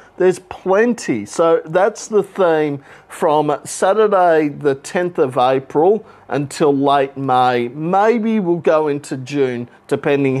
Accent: Australian